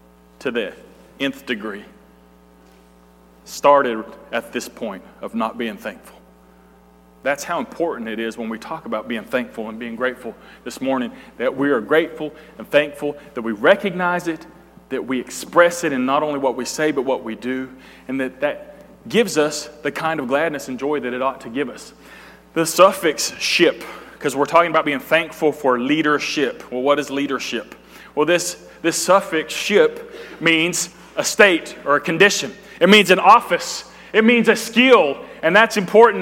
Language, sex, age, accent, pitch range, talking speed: English, male, 30-49, American, 130-185 Hz, 175 wpm